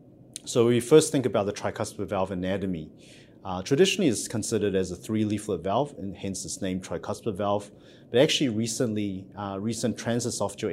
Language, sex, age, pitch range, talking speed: English, male, 30-49, 95-110 Hz, 170 wpm